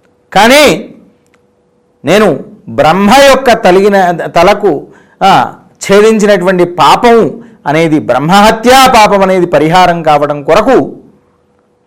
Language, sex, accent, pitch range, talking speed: Telugu, male, native, 145-230 Hz, 70 wpm